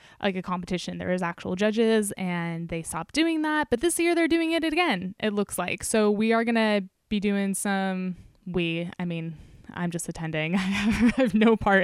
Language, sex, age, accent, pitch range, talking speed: English, female, 10-29, American, 180-225 Hz, 205 wpm